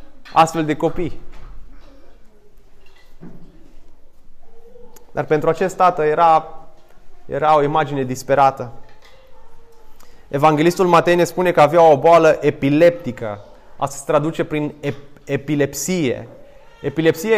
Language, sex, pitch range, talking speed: Romanian, male, 155-190 Hz, 95 wpm